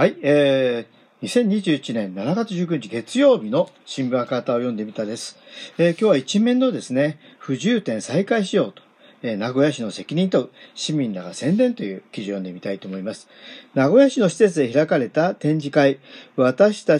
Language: Japanese